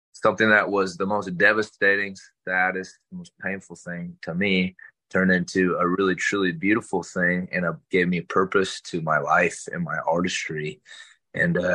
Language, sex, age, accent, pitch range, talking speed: English, male, 20-39, American, 85-95 Hz, 170 wpm